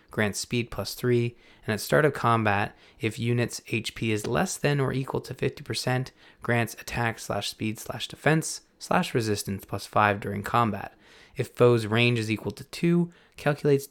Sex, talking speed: male, 170 wpm